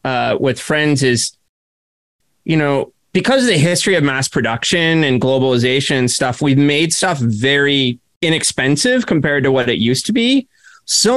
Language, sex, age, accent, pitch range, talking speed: English, male, 30-49, American, 125-165 Hz, 160 wpm